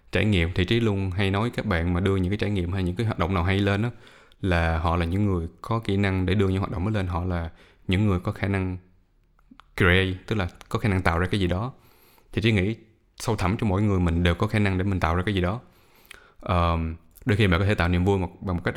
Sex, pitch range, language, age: male, 90-110 Hz, Vietnamese, 20-39